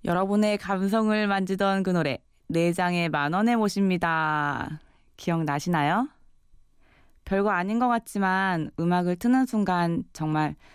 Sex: female